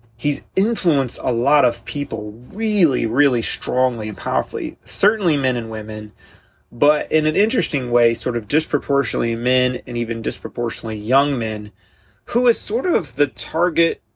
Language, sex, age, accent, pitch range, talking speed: English, male, 30-49, American, 115-145 Hz, 150 wpm